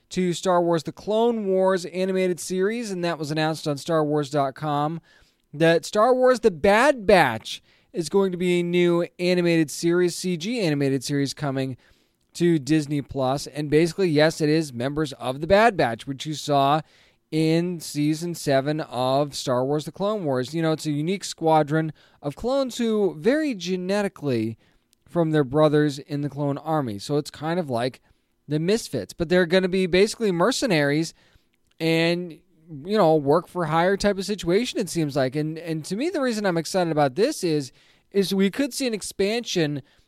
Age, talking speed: 20-39, 175 wpm